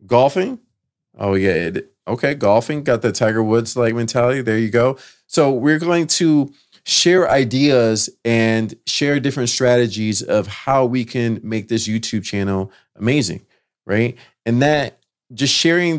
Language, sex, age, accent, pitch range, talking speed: English, male, 30-49, American, 100-125 Hz, 145 wpm